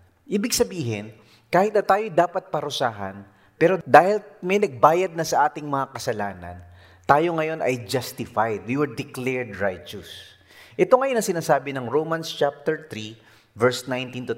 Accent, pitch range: Filipino, 110-175 Hz